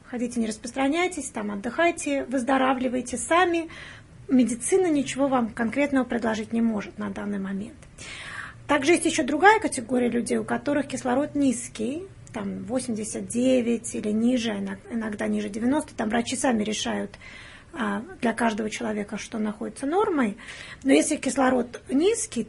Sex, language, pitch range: female, Russian, 225-275 Hz